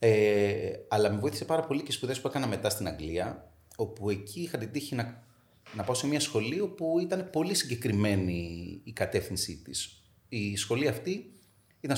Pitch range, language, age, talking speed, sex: 105-140 Hz, Greek, 30-49, 175 wpm, male